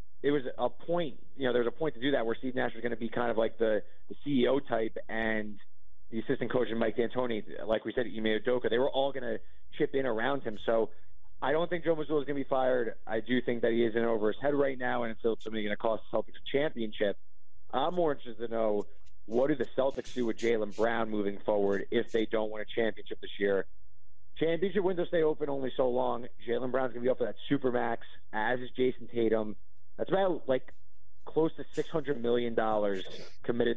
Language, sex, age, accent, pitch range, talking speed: English, male, 30-49, American, 105-125 Hz, 235 wpm